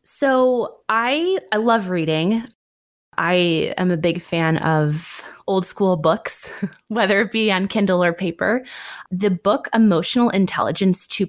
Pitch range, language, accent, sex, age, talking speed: 165-205 Hz, English, American, female, 20-39, 135 wpm